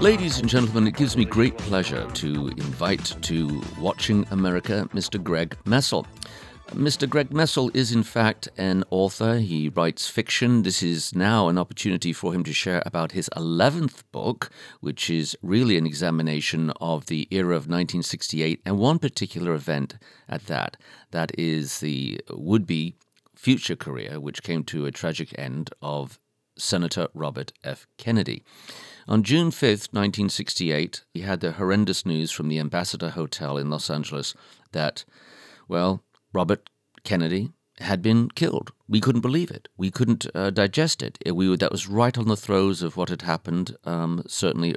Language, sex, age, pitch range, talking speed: English, male, 50-69, 80-110 Hz, 160 wpm